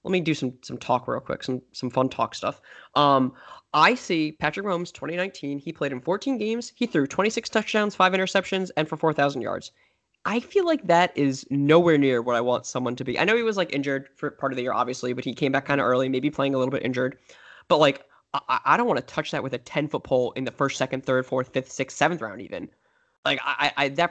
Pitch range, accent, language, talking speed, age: 130-190 Hz, American, English, 250 wpm, 10-29